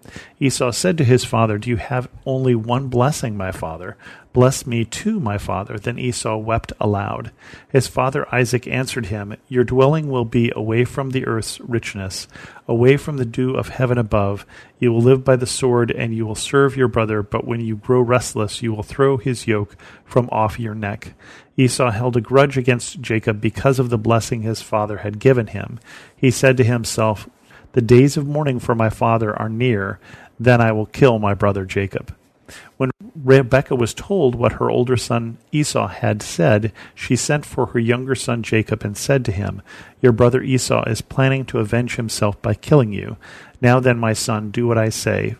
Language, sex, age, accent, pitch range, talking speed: English, male, 40-59, American, 110-130 Hz, 190 wpm